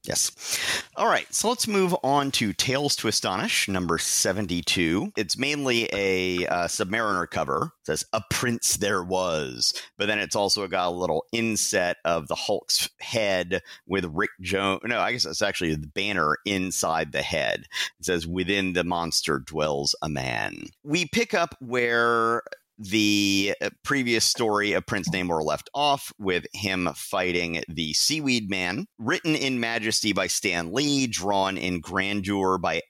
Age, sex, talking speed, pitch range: 50-69, male, 155 wpm, 90-130 Hz